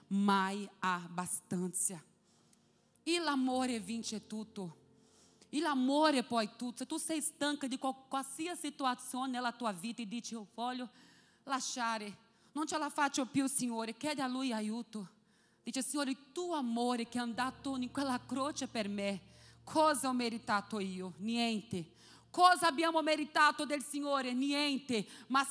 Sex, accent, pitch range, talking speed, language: female, Brazilian, 225-290 Hz, 140 wpm, Italian